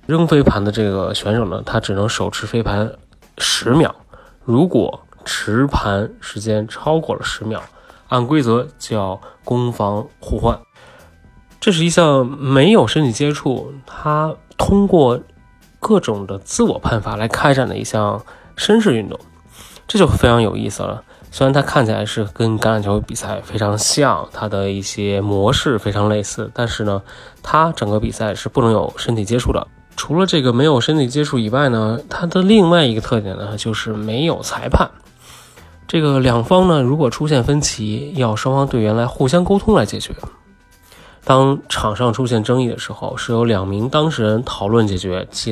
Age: 20-39